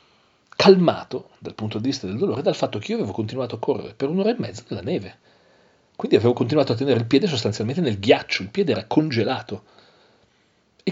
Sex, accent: male, native